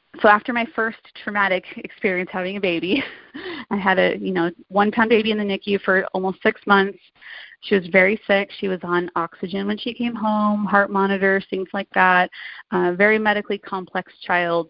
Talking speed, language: 185 wpm, English